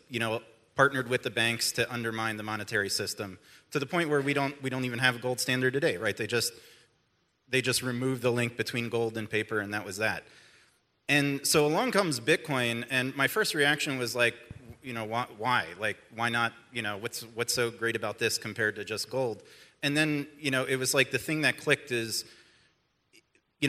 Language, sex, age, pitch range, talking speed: English, male, 30-49, 110-130 Hz, 210 wpm